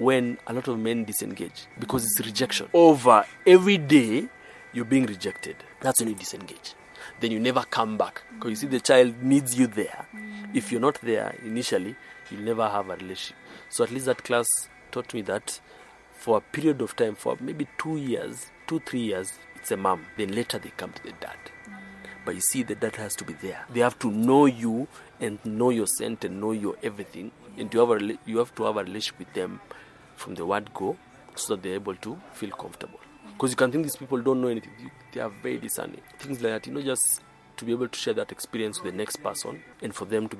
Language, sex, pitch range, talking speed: English, male, 110-130 Hz, 225 wpm